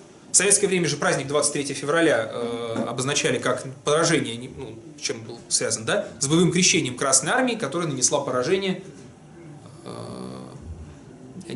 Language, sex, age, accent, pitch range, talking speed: Russian, male, 20-39, native, 130-185 Hz, 135 wpm